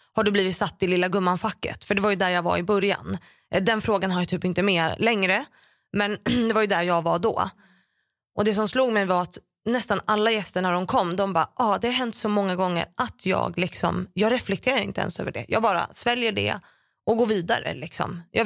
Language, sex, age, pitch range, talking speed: Swedish, female, 20-39, 180-215 Hz, 235 wpm